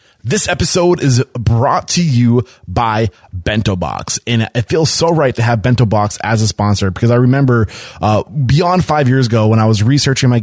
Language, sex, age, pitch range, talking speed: English, male, 20-39, 110-145 Hz, 195 wpm